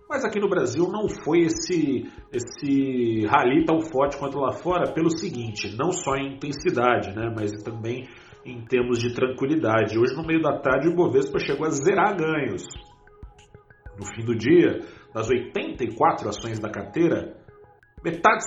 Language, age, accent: Portuguese, 40-59, Brazilian